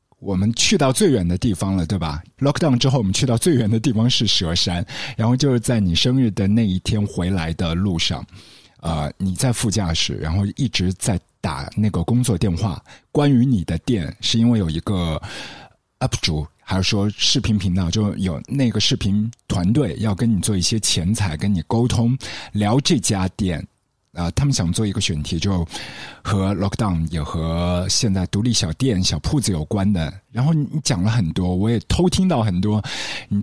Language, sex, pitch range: Chinese, male, 95-130 Hz